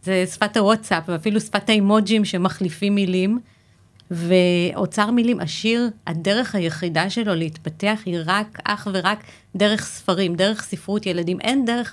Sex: female